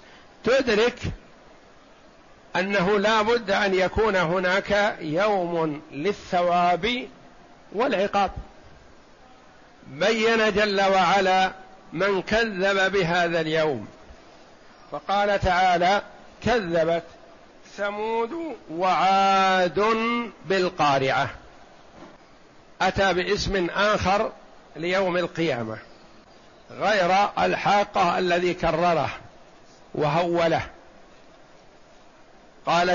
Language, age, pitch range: Arabic, 50-69, 170-200 Hz